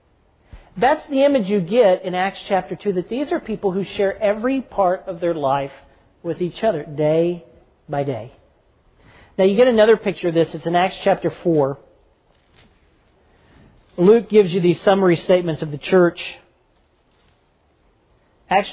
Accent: American